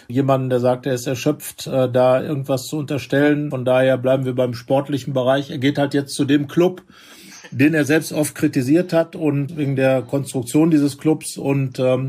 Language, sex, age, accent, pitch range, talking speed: German, male, 50-69, German, 130-145 Hz, 195 wpm